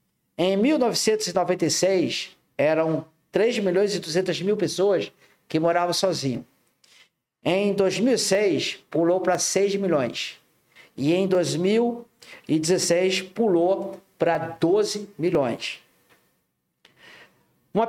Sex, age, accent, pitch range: male, 50-69, Brazilian, 155-195 Hz